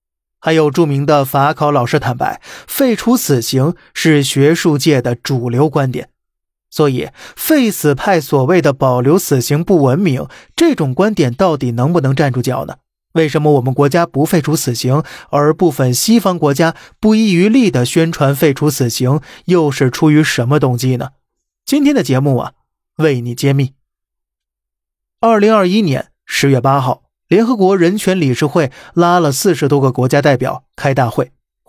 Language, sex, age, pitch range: Chinese, male, 20-39, 135-170 Hz